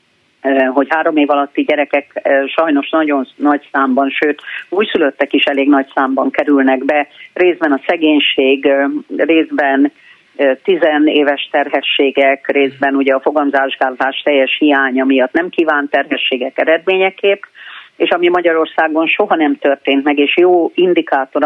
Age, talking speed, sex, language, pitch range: 40-59, 125 wpm, female, Hungarian, 140-175 Hz